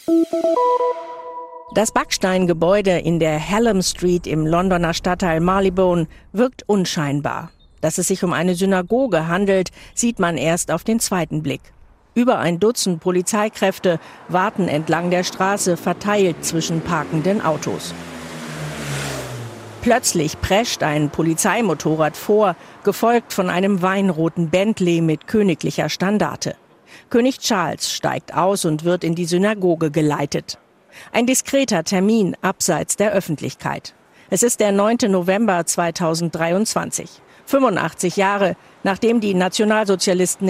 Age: 50-69